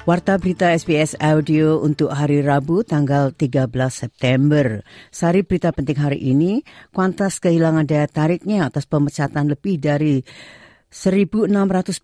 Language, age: Indonesian, 40-59